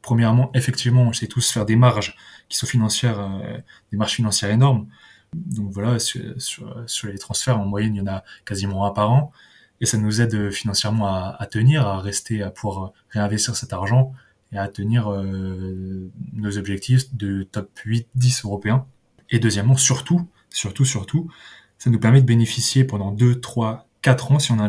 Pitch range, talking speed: 105-125 Hz, 185 wpm